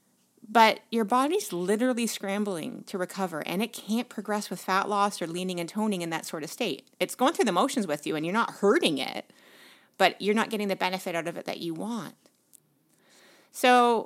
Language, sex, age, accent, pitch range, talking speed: English, female, 30-49, American, 185-235 Hz, 205 wpm